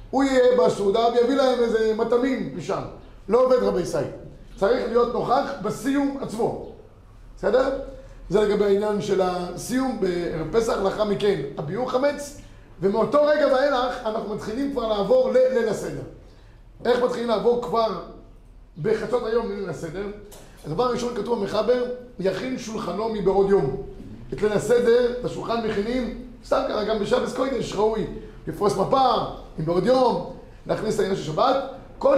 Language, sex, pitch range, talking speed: Hebrew, male, 195-245 Hz, 140 wpm